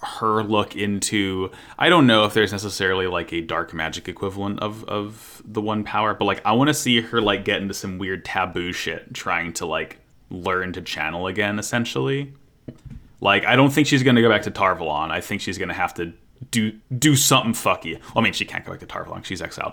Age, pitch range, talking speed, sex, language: 20-39, 95-120 Hz, 220 wpm, male, English